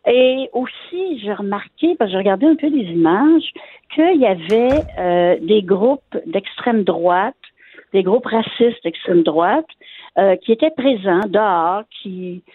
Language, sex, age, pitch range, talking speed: French, female, 60-79, 170-230 Hz, 150 wpm